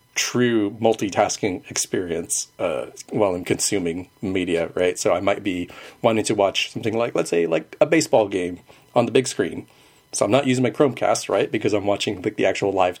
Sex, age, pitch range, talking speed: male, 40-59, 100-130 Hz, 195 wpm